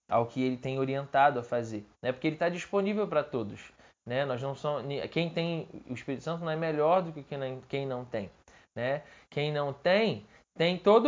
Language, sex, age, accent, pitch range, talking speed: Portuguese, male, 20-39, Brazilian, 135-190 Hz, 200 wpm